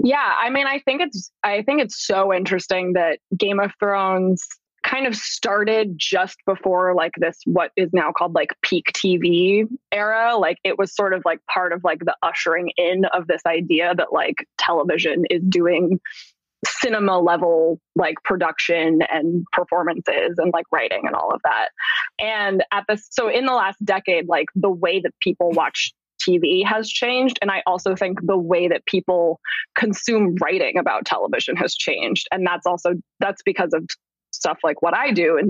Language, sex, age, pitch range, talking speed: English, female, 20-39, 175-210 Hz, 175 wpm